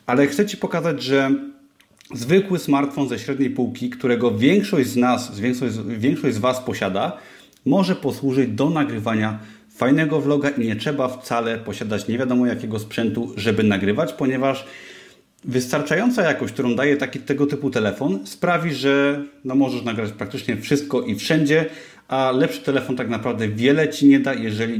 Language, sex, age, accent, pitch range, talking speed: Polish, male, 30-49, native, 115-150 Hz, 150 wpm